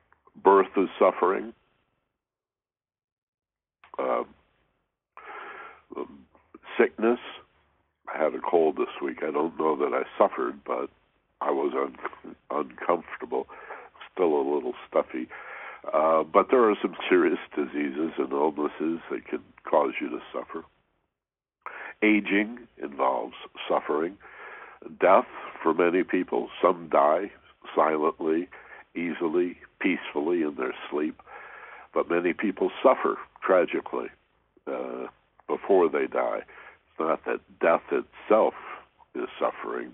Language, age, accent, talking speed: English, 60-79, American, 110 wpm